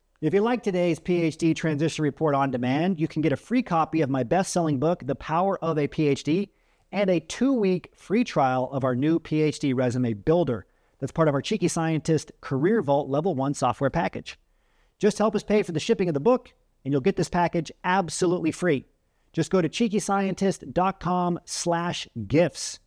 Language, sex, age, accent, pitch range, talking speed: English, male, 40-59, American, 135-175 Hz, 180 wpm